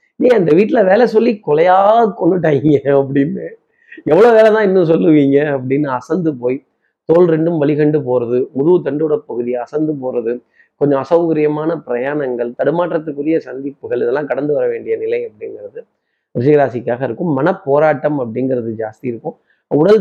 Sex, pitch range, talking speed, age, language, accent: male, 130-165 Hz, 130 wpm, 30-49, Tamil, native